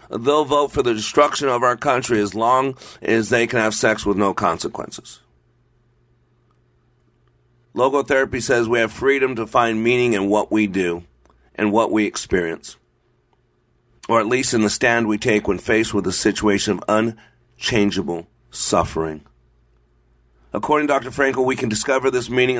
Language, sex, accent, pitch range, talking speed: English, male, American, 85-135 Hz, 155 wpm